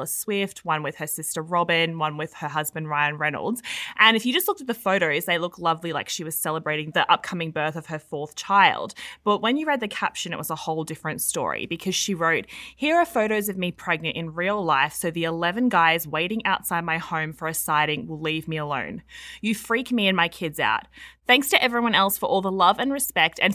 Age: 20-39